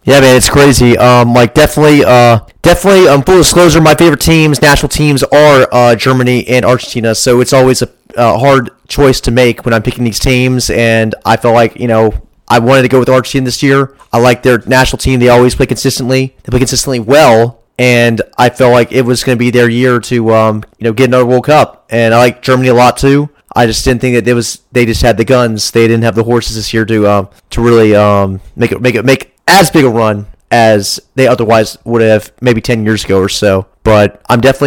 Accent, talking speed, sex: American, 240 wpm, male